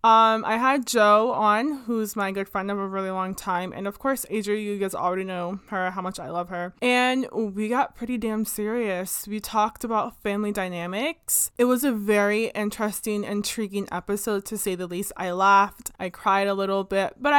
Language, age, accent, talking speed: English, 20-39, American, 200 wpm